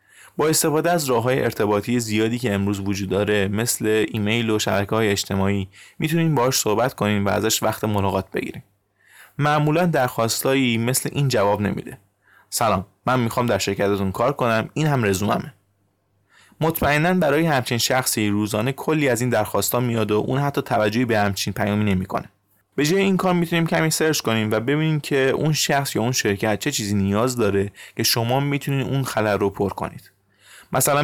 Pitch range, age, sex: 100-140 Hz, 20-39, male